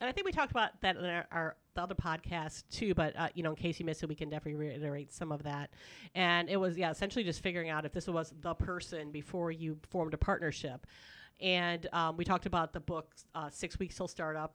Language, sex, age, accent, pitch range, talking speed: English, female, 40-59, American, 155-175 Hz, 250 wpm